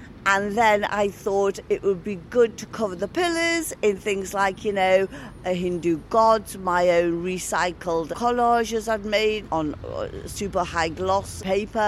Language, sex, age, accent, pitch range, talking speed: English, female, 50-69, British, 185-255 Hz, 155 wpm